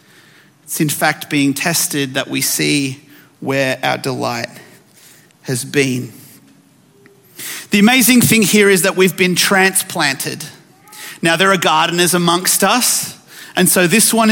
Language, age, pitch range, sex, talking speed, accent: English, 40-59, 165-255 Hz, male, 135 wpm, Australian